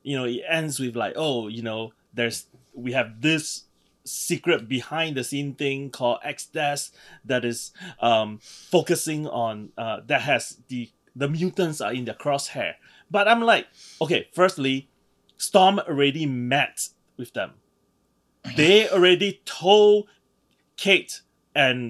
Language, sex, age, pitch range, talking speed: English, male, 30-49, 125-175 Hz, 135 wpm